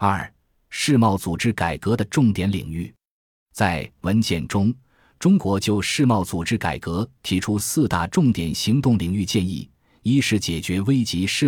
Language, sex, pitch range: Chinese, male, 85-115 Hz